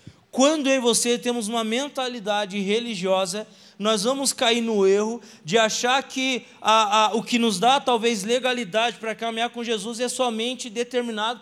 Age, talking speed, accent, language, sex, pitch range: 20-39, 165 wpm, Brazilian, Portuguese, male, 220-260 Hz